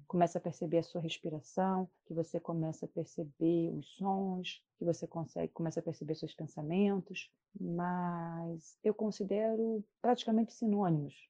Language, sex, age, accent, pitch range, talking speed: Portuguese, female, 30-49, Brazilian, 165-210 Hz, 140 wpm